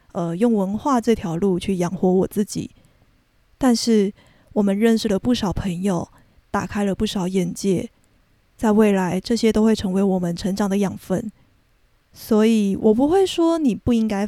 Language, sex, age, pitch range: Chinese, female, 20-39, 190-235 Hz